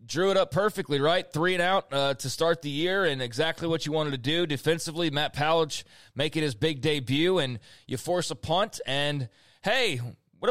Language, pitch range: English, 140-180 Hz